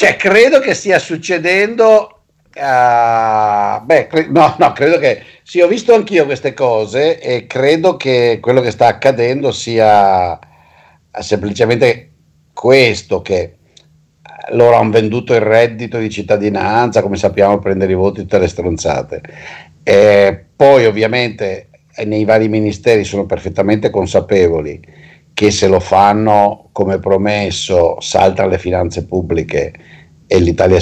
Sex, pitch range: male, 90-115 Hz